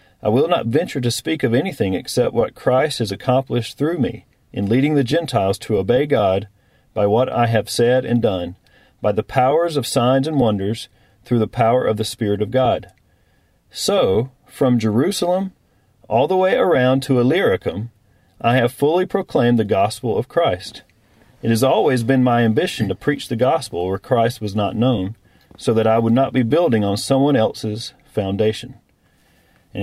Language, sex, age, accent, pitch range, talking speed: English, male, 40-59, American, 110-135 Hz, 175 wpm